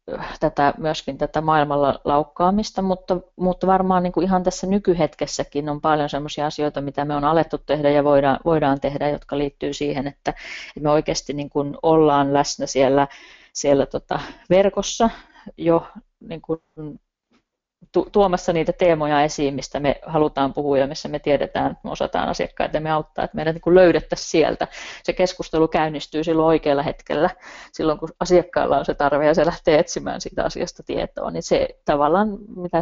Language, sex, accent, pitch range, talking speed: Finnish, female, native, 145-175 Hz, 150 wpm